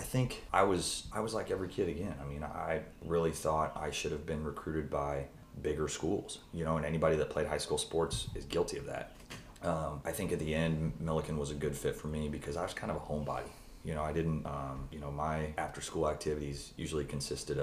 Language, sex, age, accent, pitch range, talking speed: English, male, 30-49, American, 70-80 Hz, 230 wpm